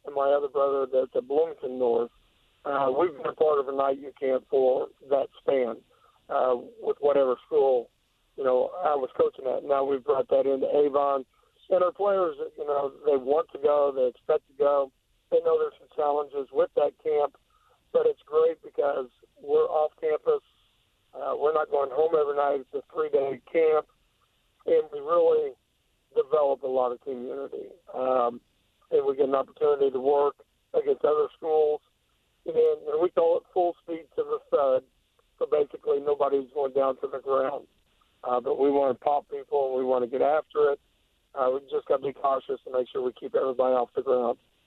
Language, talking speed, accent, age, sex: English, 190 wpm, American, 50-69, male